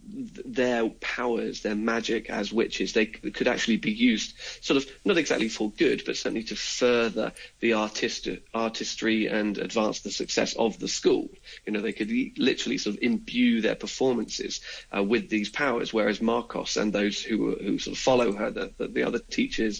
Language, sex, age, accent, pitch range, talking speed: English, male, 30-49, British, 105-115 Hz, 180 wpm